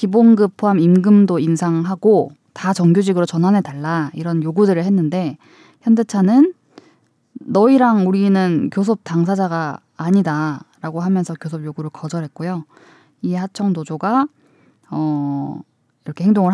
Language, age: Korean, 20-39